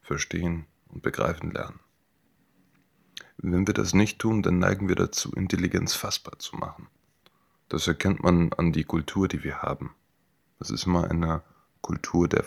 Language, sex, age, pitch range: German, male, 30-49, 80-90 Hz